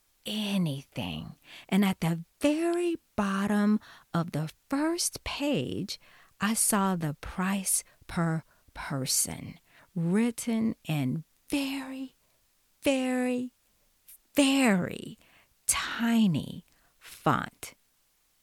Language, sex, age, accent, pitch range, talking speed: English, female, 50-69, American, 160-225 Hz, 75 wpm